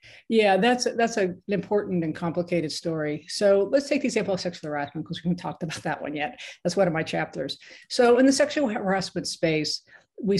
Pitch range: 170-195 Hz